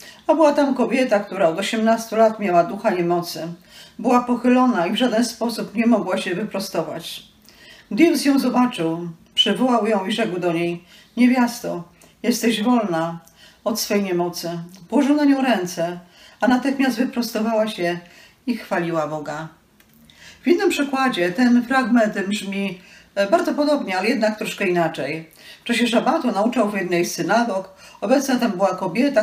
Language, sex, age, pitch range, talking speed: Polish, female, 40-59, 175-245 Hz, 145 wpm